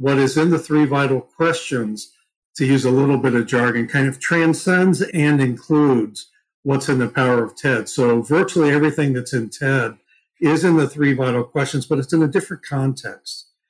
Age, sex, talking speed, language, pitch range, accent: 50-69, male, 190 wpm, English, 120-145 Hz, American